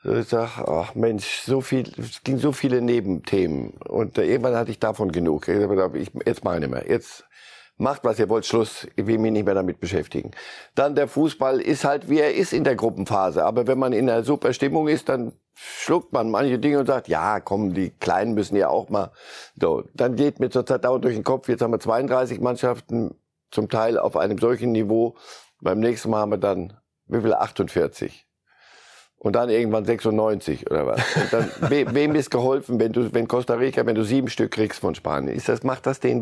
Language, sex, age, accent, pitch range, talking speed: German, male, 50-69, German, 105-130 Hz, 210 wpm